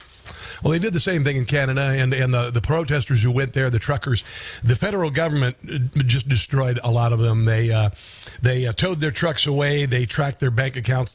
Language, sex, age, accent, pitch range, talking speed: English, male, 50-69, American, 125-145 Hz, 215 wpm